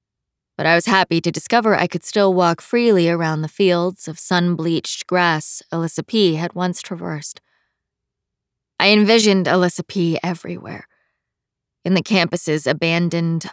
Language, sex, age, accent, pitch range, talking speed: English, female, 20-39, American, 160-185 Hz, 135 wpm